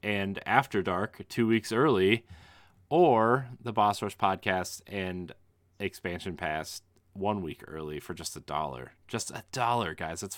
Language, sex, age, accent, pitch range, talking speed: English, male, 30-49, American, 90-110 Hz, 150 wpm